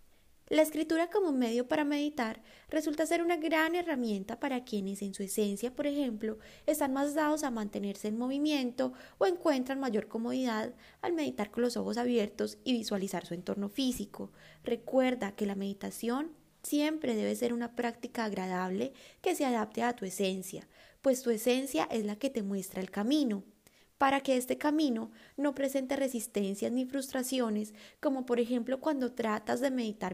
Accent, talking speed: Colombian, 165 wpm